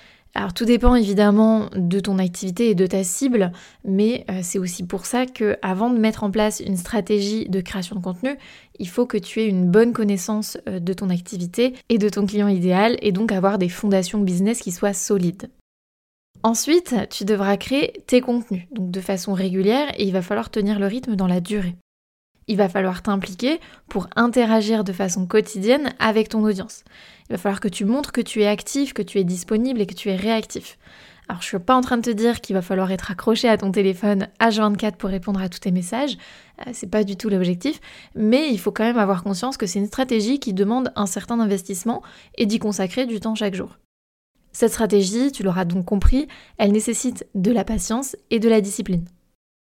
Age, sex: 20-39, female